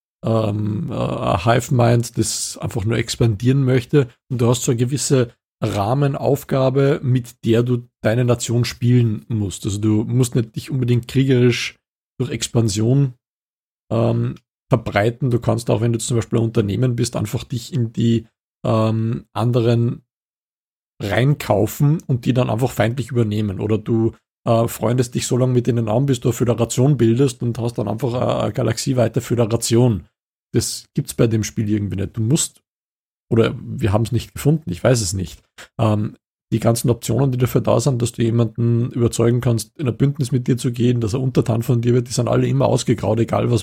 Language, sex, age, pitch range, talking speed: German, male, 50-69, 115-130 Hz, 180 wpm